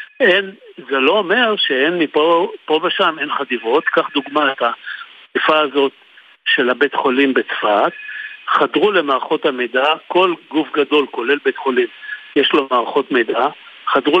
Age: 60-79